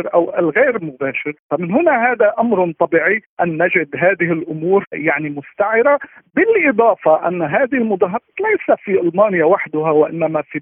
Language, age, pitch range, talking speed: Arabic, 50-69, 160-230 Hz, 135 wpm